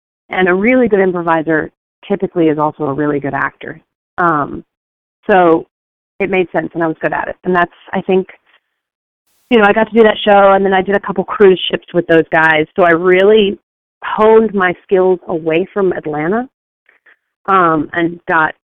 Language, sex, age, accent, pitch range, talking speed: English, female, 30-49, American, 155-190 Hz, 185 wpm